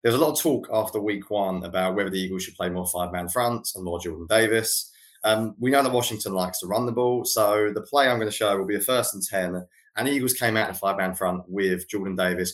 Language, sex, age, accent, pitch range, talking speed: English, male, 20-39, British, 90-110 Hz, 265 wpm